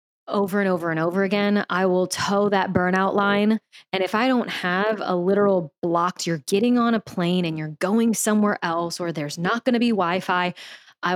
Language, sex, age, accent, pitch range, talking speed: English, female, 20-39, American, 175-205 Hz, 205 wpm